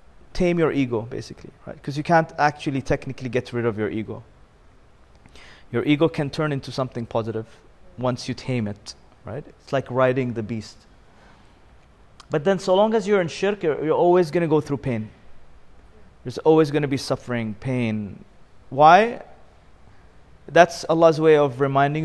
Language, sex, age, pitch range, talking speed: English, male, 30-49, 120-170 Hz, 165 wpm